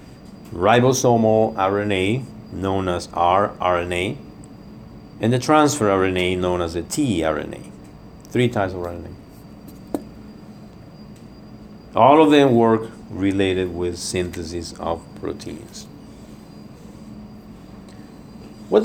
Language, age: English, 50-69